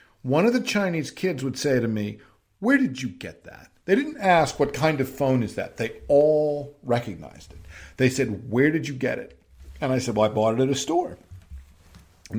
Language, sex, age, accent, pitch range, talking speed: English, male, 50-69, American, 120-150 Hz, 220 wpm